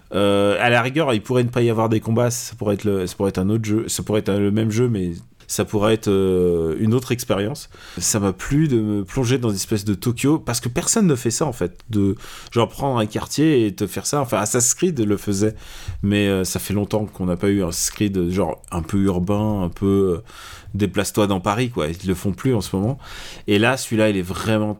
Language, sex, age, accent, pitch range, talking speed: French, male, 30-49, French, 100-130 Hz, 240 wpm